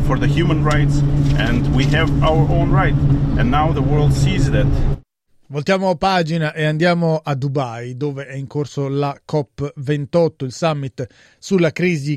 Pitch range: 140-165 Hz